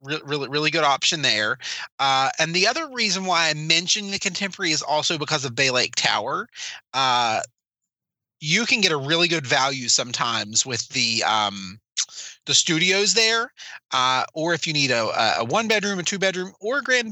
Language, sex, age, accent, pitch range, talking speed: English, male, 30-49, American, 135-190 Hz, 180 wpm